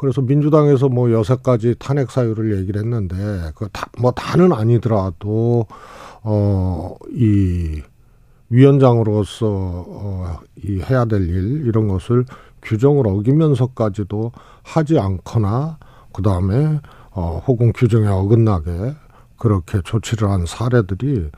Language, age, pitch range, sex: Korean, 50-69, 105-140 Hz, male